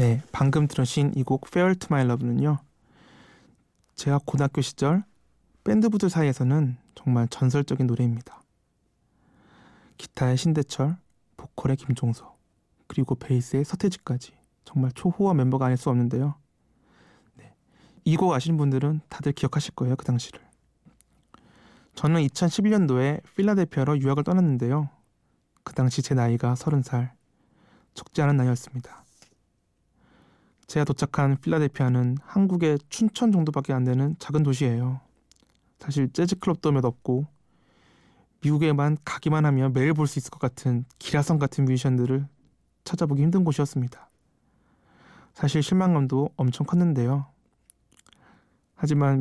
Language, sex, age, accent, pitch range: Korean, male, 20-39, native, 130-150 Hz